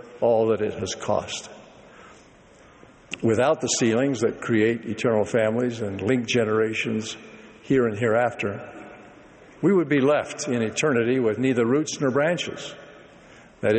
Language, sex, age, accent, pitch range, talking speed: English, male, 60-79, American, 110-135 Hz, 130 wpm